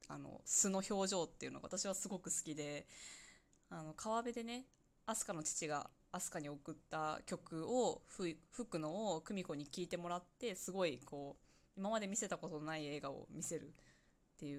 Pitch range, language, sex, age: 155-190 Hz, Japanese, female, 20-39